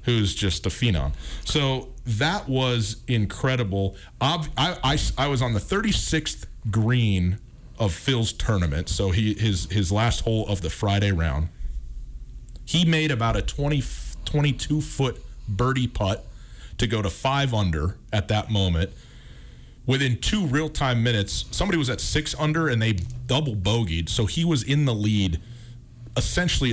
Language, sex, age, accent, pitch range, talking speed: English, male, 40-59, American, 95-130 Hz, 145 wpm